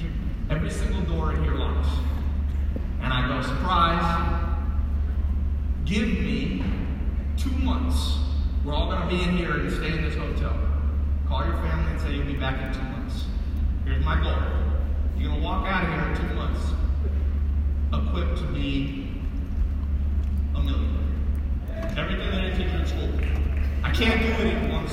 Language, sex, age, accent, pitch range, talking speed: English, male, 40-59, American, 70-75 Hz, 160 wpm